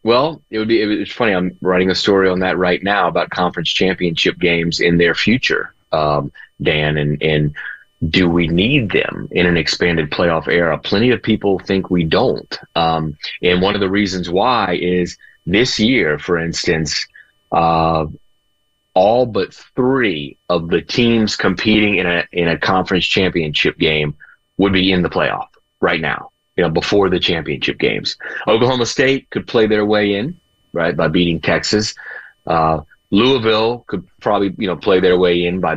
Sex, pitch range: male, 85-100 Hz